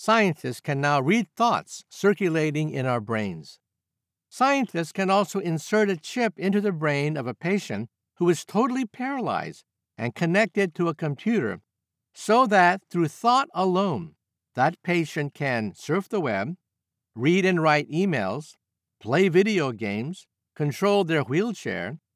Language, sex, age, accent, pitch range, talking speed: English, male, 50-69, American, 135-195 Hz, 140 wpm